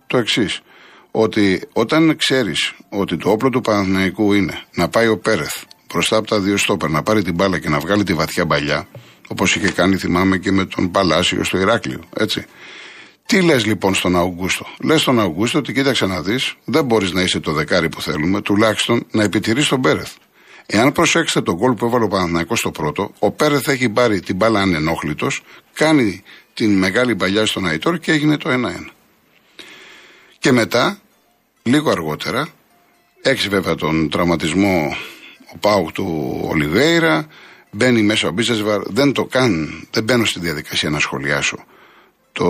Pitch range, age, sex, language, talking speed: 90-125 Hz, 60-79, male, Greek, 170 wpm